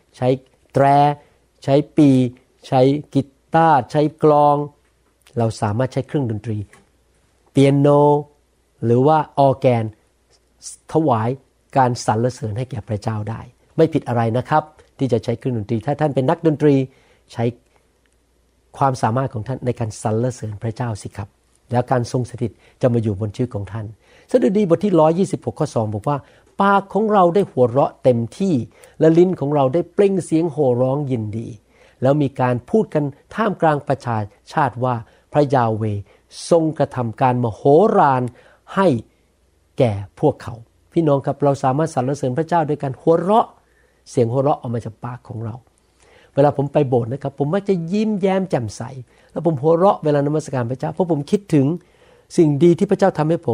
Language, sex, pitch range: Thai, male, 115-155 Hz